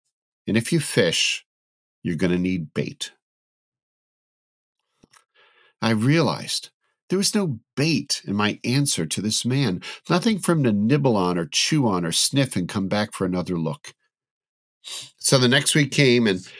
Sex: male